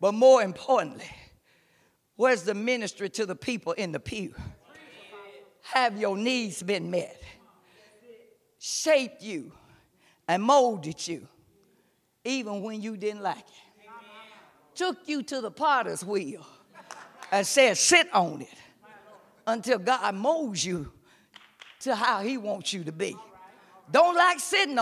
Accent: American